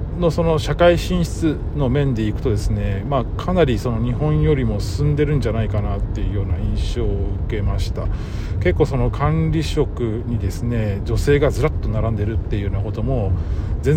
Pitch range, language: 90-115 Hz, Japanese